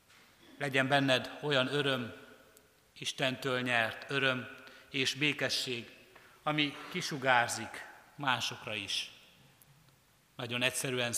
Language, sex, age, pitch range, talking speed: Hungarian, male, 60-79, 125-145 Hz, 80 wpm